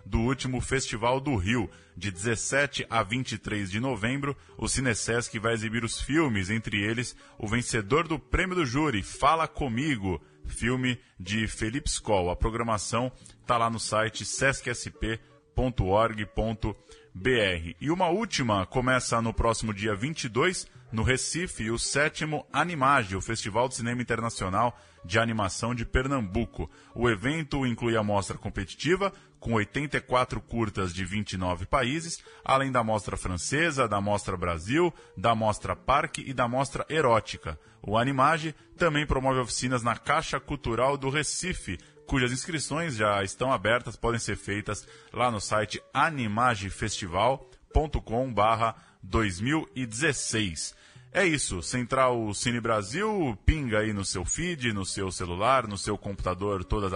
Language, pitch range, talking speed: Portuguese, 105-135 Hz, 135 wpm